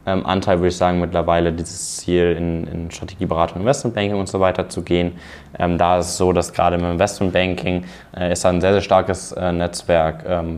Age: 20-39